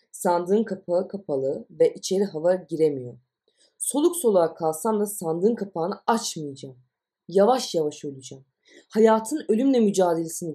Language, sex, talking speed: Turkish, female, 115 wpm